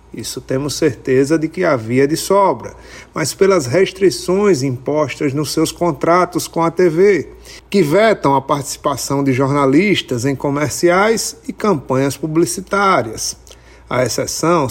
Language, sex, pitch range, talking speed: Portuguese, male, 135-180 Hz, 125 wpm